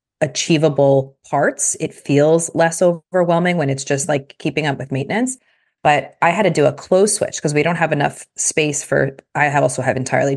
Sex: female